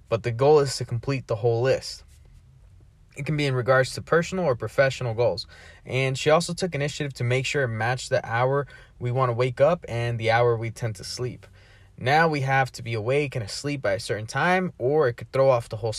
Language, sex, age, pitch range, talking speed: English, male, 20-39, 115-140 Hz, 230 wpm